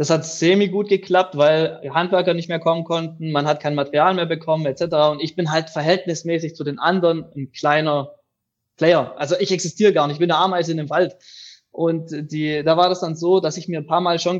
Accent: German